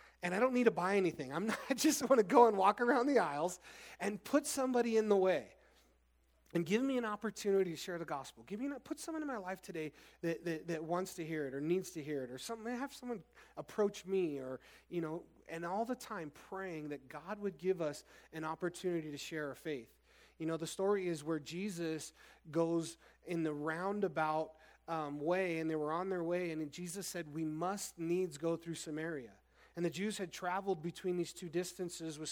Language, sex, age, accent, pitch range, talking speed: English, male, 30-49, American, 155-190 Hz, 220 wpm